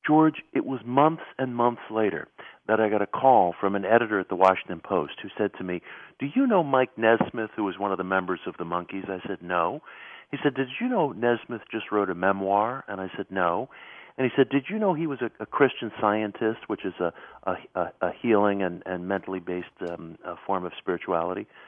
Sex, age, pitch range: male, 50-69, 100-145 Hz